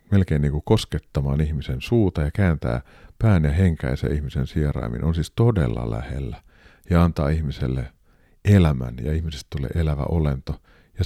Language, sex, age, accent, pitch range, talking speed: Finnish, male, 50-69, native, 70-90 Hz, 145 wpm